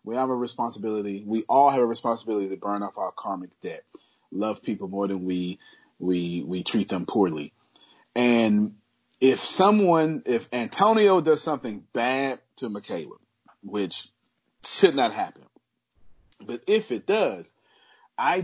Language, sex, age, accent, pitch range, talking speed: English, male, 30-49, American, 100-165 Hz, 145 wpm